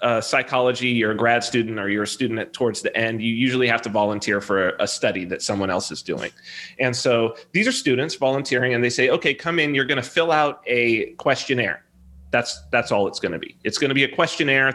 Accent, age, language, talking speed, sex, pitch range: American, 30-49, English, 240 wpm, male, 115-170 Hz